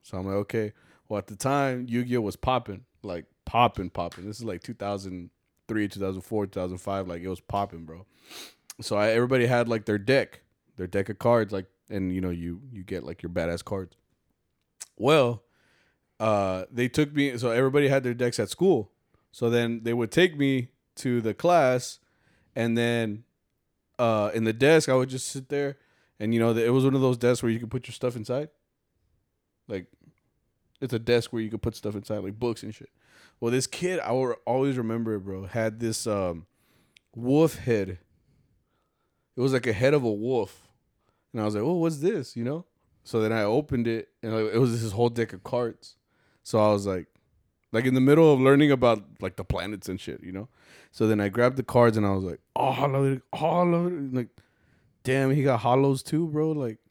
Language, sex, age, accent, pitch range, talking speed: English, male, 20-39, American, 100-130 Hz, 205 wpm